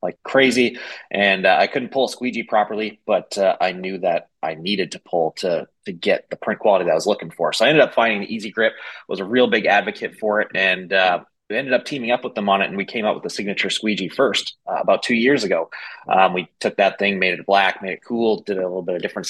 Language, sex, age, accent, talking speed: English, male, 30-49, American, 270 wpm